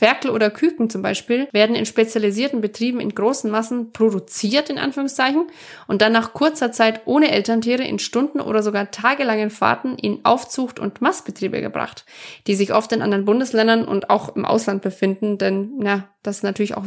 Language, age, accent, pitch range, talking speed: German, 20-39, German, 205-240 Hz, 180 wpm